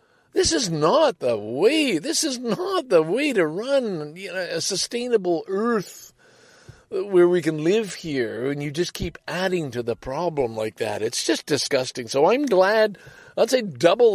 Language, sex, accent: English, male, American